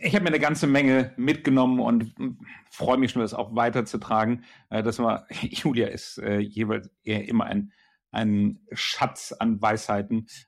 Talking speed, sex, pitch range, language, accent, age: 145 wpm, male, 110-130 Hz, German, German, 50-69